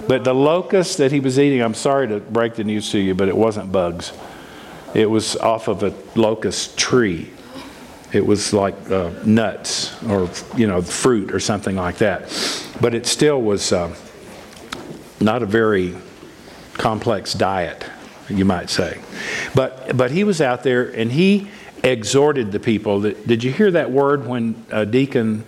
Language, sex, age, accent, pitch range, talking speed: English, male, 50-69, American, 105-140 Hz, 165 wpm